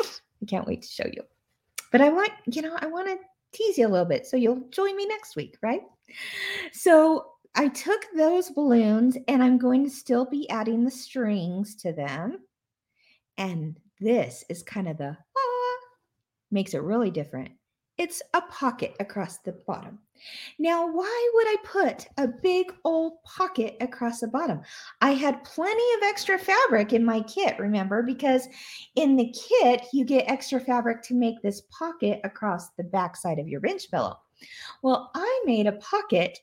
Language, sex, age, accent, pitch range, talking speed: English, female, 40-59, American, 225-335 Hz, 175 wpm